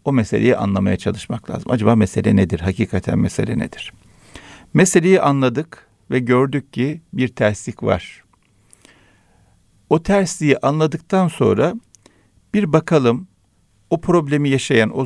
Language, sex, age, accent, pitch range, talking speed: Turkish, male, 50-69, native, 110-160 Hz, 115 wpm